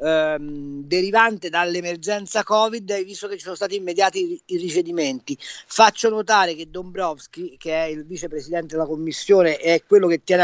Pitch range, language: 165-220 Hz, Italian